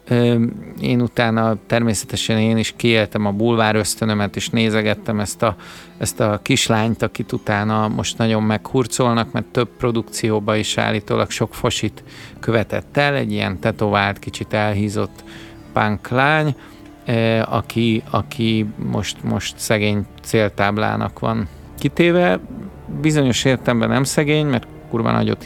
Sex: male